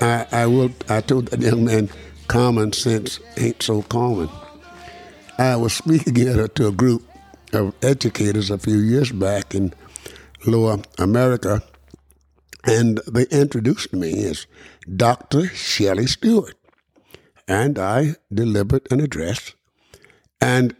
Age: 60-79